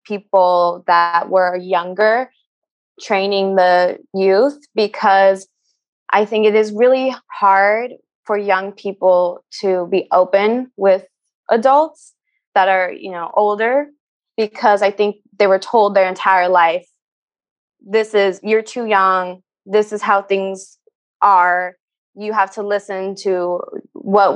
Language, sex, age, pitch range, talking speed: English, female, 20-39, 185-220 Hz, 130 wpm